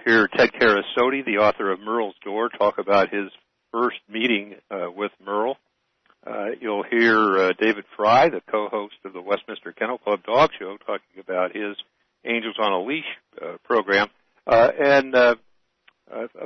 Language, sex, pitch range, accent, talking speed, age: English, male, 100-120 Hz, American, 150 wpm, 60-79